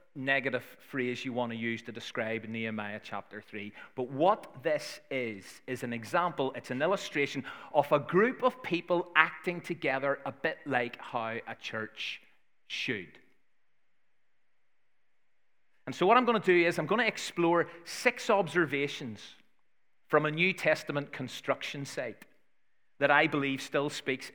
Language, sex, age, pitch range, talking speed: English, male, 30-49, 125-175 Hz, 150 wpm